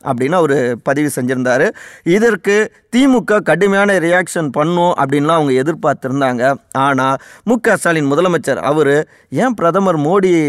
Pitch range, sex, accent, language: 140-175 Hz, male, native, Tamil